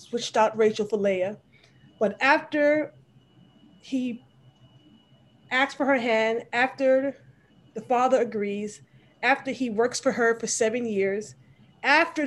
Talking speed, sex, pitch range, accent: 120 wpm, female, 195-245 Hz, American